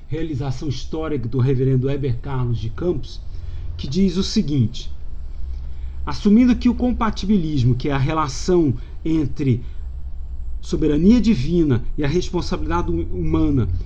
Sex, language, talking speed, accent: male, Portuguese, 115 wpm, Brazilian